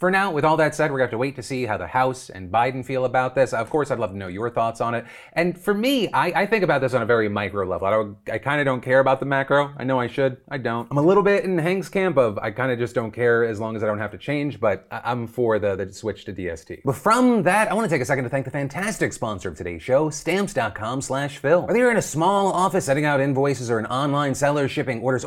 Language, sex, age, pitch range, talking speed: English, male, 30-49, 120-170 Hz, 290 wpm